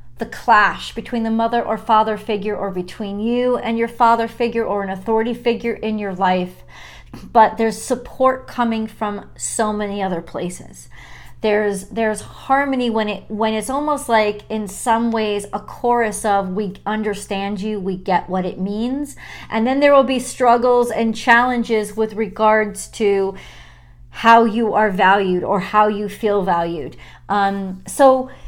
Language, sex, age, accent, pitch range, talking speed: English, female, 40-59, American, 195-230 Hz, 160 wpm